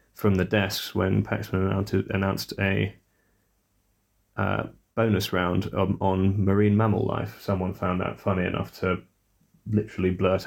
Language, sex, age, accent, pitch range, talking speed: English, male, 30-49, British, 95-110 Hz, 140 wpm